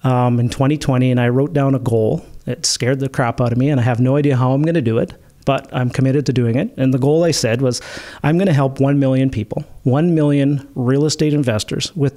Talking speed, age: 255 wpm, 40-59